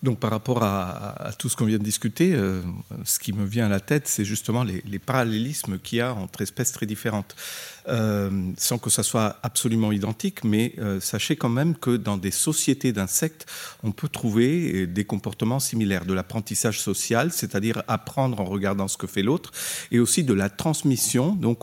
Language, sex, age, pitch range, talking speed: French, male, 50-69, 105-130 Hz, 195 wpm